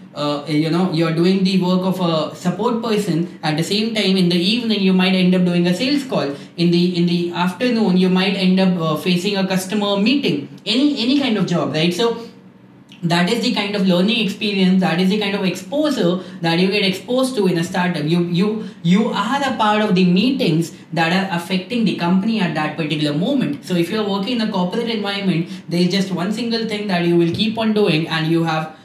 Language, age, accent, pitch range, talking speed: English, 10-29, Indian, 175-215 Hz, 225 wpm